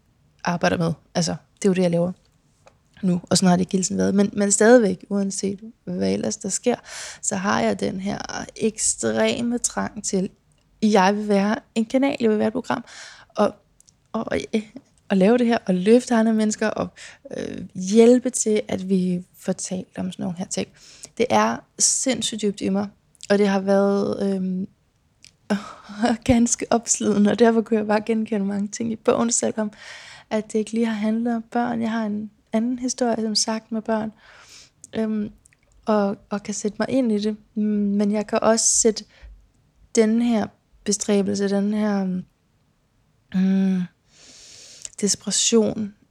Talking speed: 165 wpm